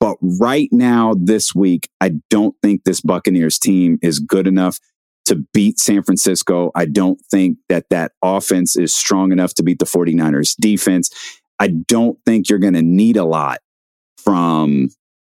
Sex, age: male, 30-49